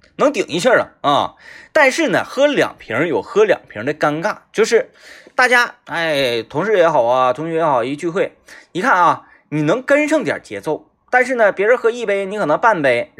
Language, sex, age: Chinese, male, 20-39